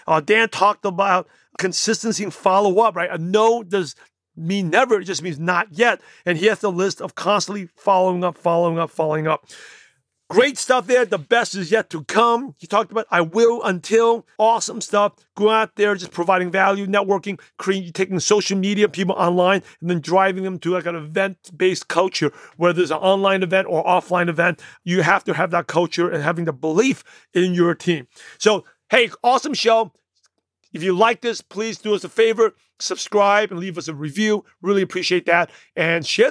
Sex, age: male, 40-59